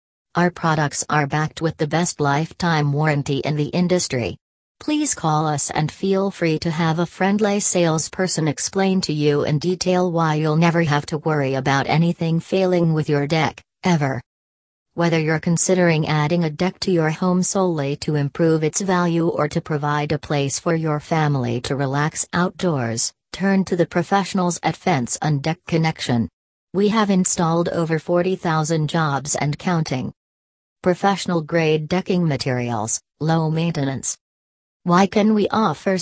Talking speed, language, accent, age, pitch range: 155 wpm, English, American, 40-59, 140-175 Hz